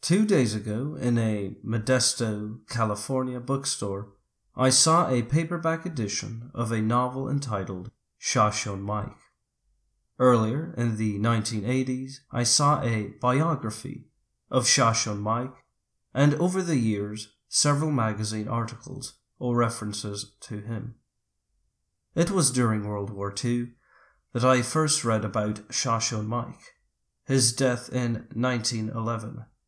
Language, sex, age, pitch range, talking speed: English, male, 30-49, 110-130 Hz, 115 wpm